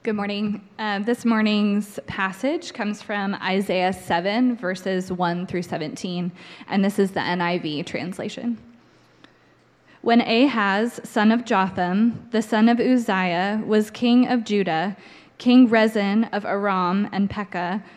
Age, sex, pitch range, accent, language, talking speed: 20-39, female, 195-230 Hz, American, English, 130 wpm